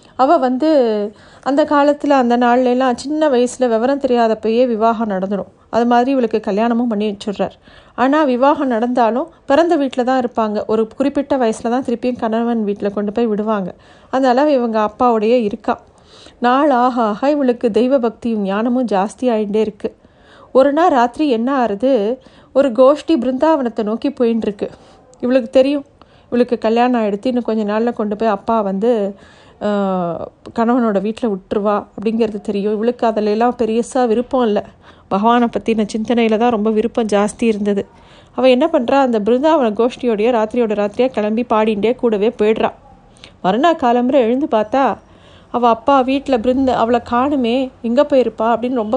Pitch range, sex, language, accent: 220-255 Hz, female, Tamil, native